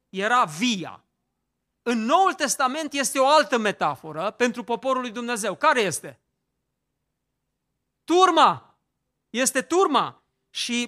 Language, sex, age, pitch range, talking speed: Romanian, male, 40-59, 225-295 Hz, 105 wpm